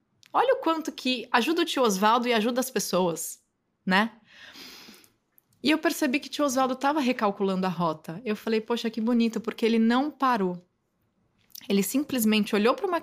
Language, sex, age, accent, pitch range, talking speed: Portuguese, female, 20-39, Brazilian, 200-275 Hz, 175 wpm